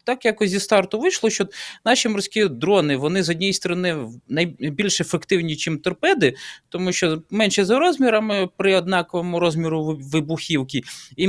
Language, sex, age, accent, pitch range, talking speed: Ukrainian, male, 20-39, native, 160-220 Hz, 145 wpm